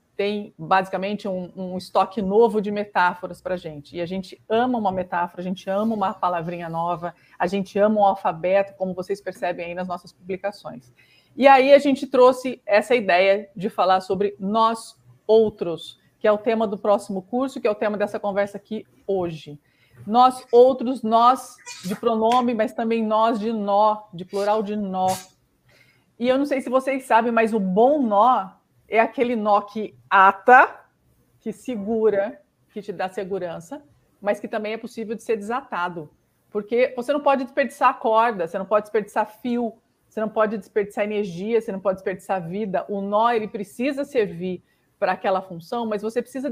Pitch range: 190-235 Hz